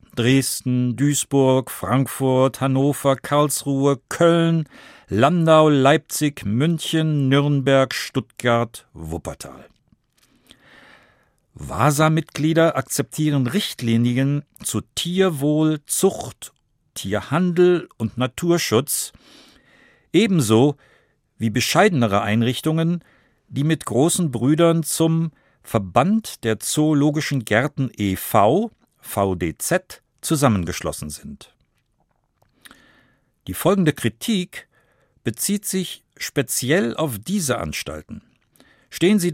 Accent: German